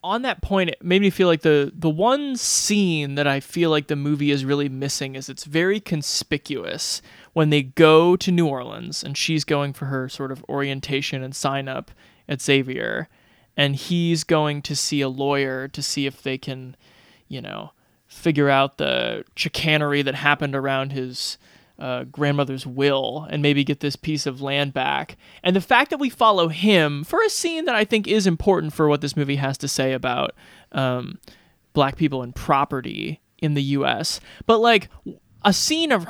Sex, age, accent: male, 20-39, American